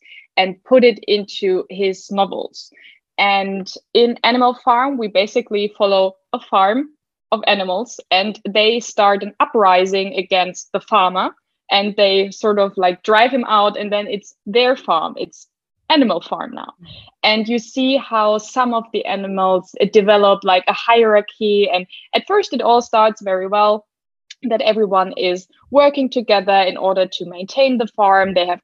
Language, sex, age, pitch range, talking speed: English, female, 20-39, 195-240 Hz, 155 wpm